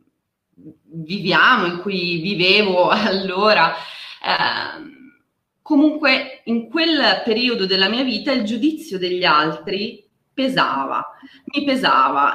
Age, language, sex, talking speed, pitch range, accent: 20-39, Italian, female, 95 wpm, 190-275 Hz, native